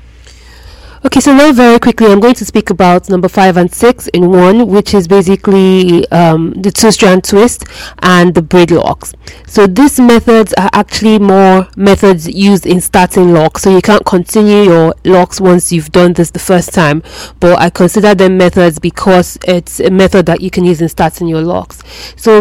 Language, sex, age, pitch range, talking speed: English, female, 20-39, 170-205 Hz, 185 wpm